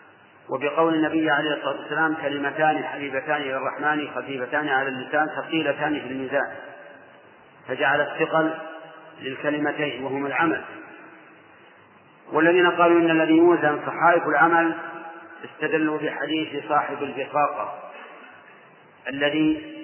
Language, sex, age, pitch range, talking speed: Arabic, male, 40-59, 145-165 Hz, 95 wpm